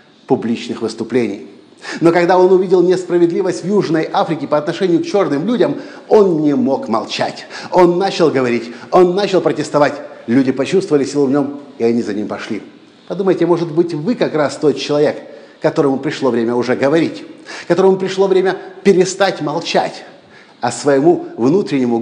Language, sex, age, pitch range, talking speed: Russian, male, 50-69, 135-175 Hz, 155 wpm